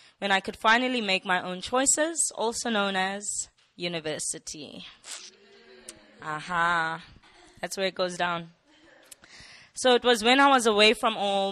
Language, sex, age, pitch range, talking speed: English, female, 20-39, 175-215 Hz, 145 wpm